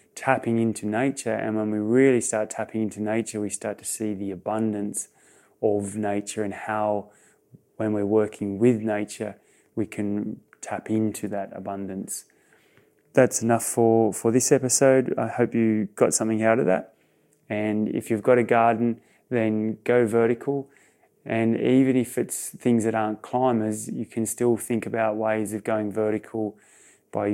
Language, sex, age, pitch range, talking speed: English, male, 20-39, 105-120 Hz, 160 wpm